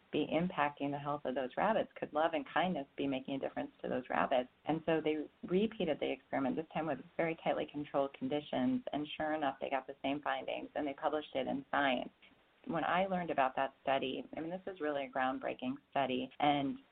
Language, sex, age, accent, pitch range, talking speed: English, female, 30-49, American, 135-165 Hz, 215 wpm